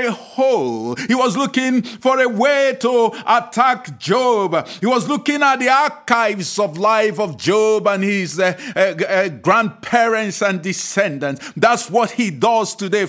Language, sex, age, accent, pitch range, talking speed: English, male, 50-69, Nigerian, 200-250 Hz, 150 wpm